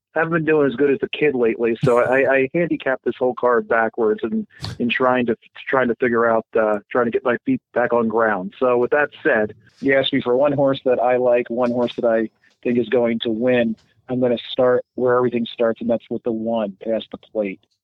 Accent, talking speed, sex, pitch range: American, 240 wpm, male, 115-125 Hz